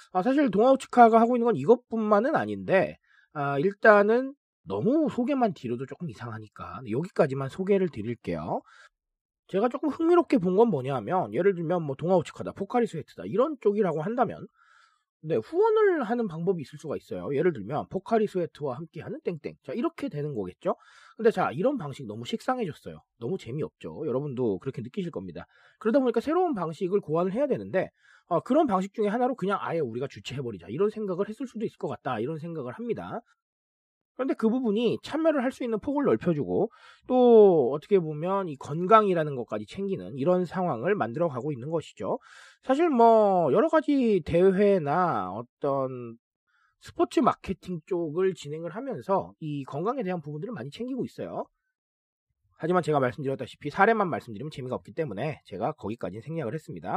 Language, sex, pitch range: Korean, male, 155-240 Hz